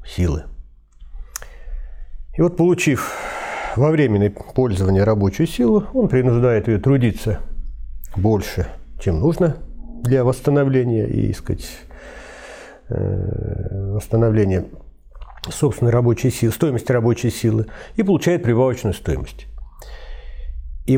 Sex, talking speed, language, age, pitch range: male, 90 wpm, Russian, 50-69, 90-140 Hz